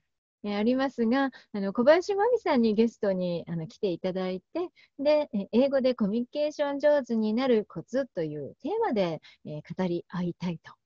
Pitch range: 175-250 Hz